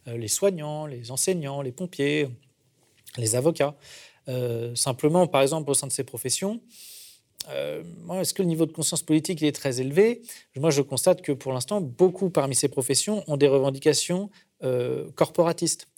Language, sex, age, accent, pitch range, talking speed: French, male, 40-59, French, 125-175 Hz, 165 wpm